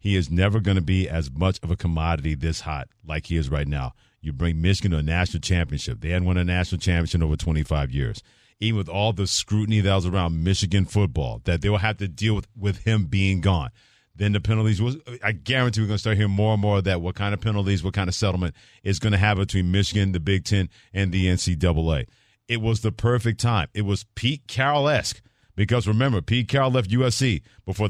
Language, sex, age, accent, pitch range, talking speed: English, male, 40-59, American, 95-110 Hz, 230 wpm